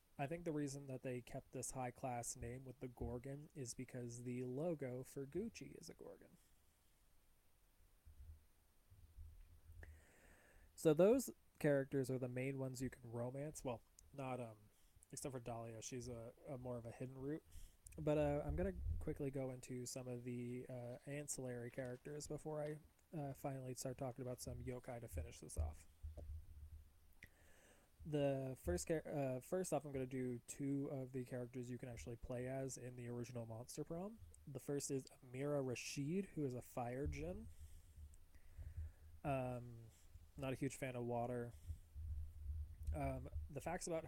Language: English